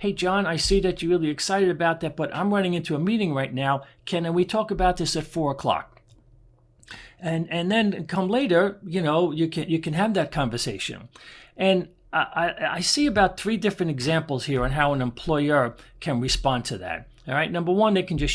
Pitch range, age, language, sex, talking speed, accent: 135-175 Hz, 50-69, English, male, 210 wpm, American